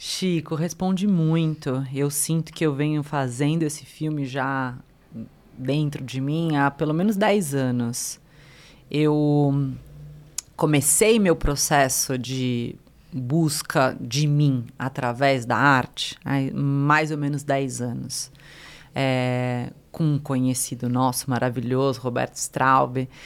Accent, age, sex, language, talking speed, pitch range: Brazilian, 30-49, female, Portuguese, 115 wpm, 140-180 Hz